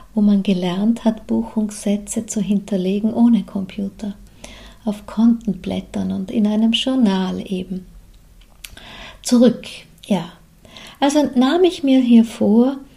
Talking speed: 110 wpm